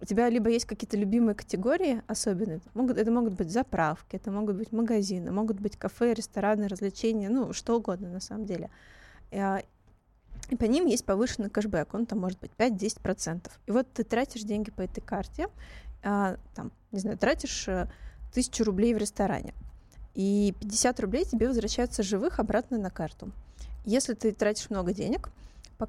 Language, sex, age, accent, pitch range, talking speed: Russian, female, 20-39, native, 195-230 Hz, 160 wpm